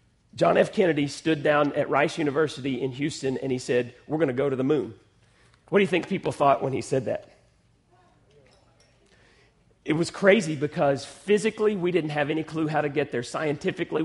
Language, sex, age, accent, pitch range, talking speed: English, male, 40-59, American, 135-175 Hz, 190 wpm